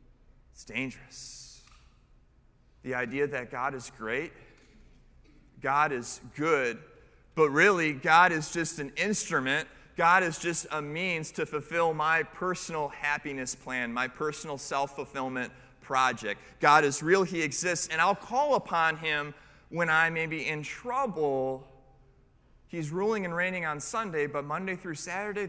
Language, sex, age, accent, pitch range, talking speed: English, male, 30-49, American, 130-170 Hz, 140 wpm